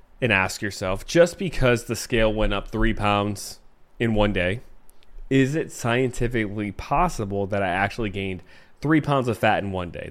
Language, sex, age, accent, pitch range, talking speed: English, male, 20-39, American, 95-120 Hz, 170 wpm